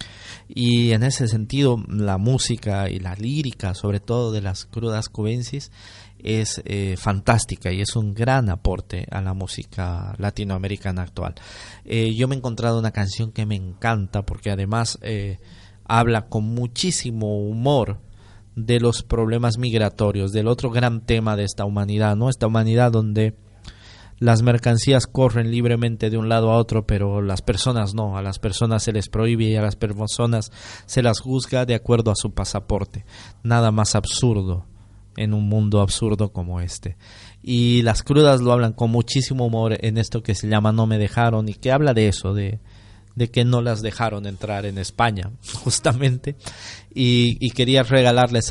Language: Spanish